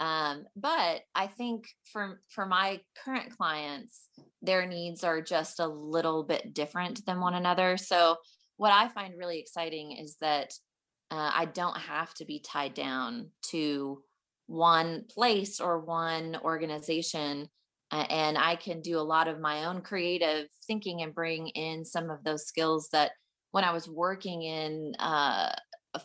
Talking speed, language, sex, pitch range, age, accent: 160 wpm, English, female, 155-180 Hz, 20-39, American